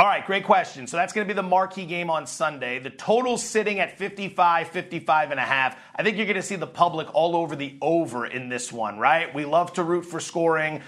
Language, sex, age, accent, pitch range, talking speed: English, male, 30-49, American, 155-195 Hz, 250 wpm